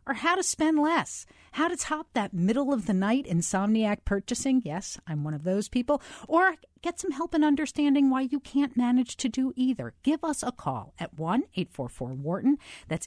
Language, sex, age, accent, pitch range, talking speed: English, female, 50-69, American, 175-275 Hz, 175 wpm